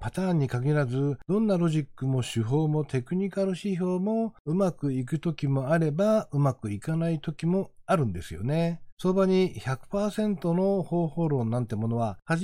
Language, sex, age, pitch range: Japanese, male, 60-79, 115-190 Hz